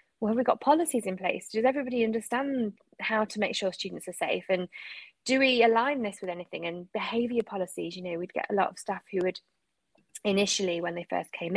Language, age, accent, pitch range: English, 20-39, British, 185-225 Hz